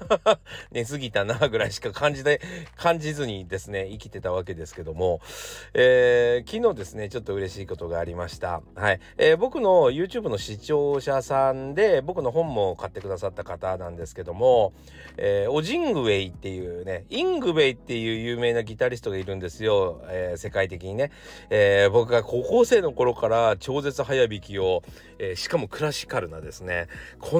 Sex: male